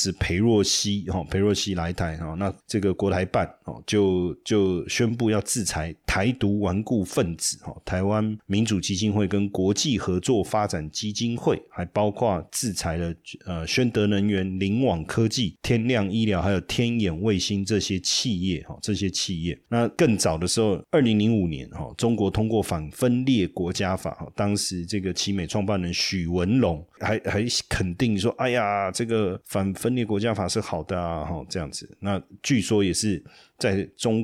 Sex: male